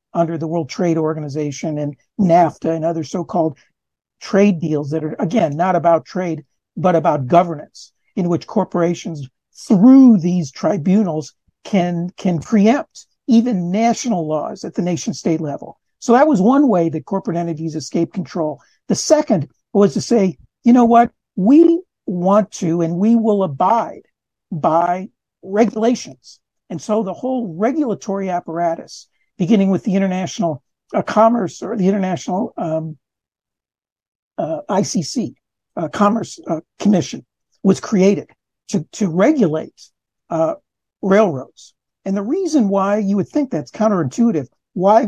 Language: English